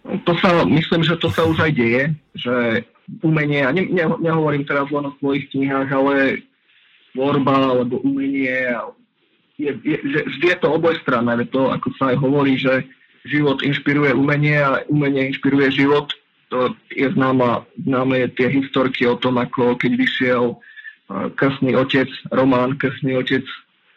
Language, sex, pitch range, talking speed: Czech, male, 130-145 Hz, 145 wpm